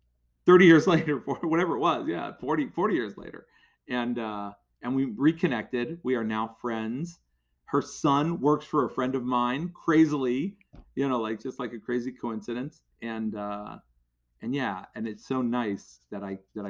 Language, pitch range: English, 95-120 Hz